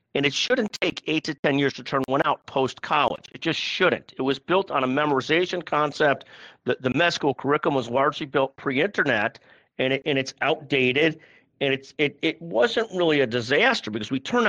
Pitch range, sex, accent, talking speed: 130-160 Hz, male, American, 200 wpm